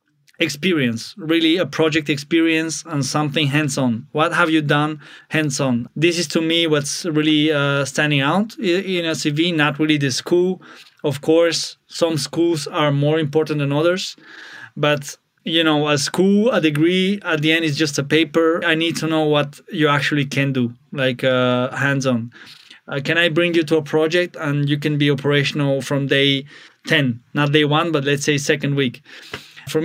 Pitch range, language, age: 145-165 Hz, English, 20-39